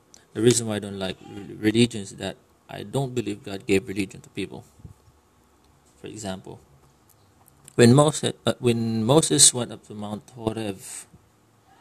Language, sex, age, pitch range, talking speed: English, male, 20-39, 100-120 Hz, 130 wpm